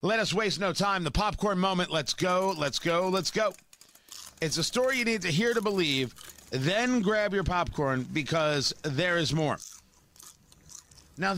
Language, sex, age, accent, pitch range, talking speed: English, male, 40-59, American, 155-200 Hz, 170 wpm